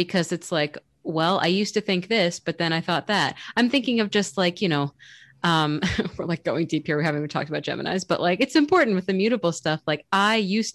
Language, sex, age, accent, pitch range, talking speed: English, female, 20-39, American, 170-215 Hz, 245 wpm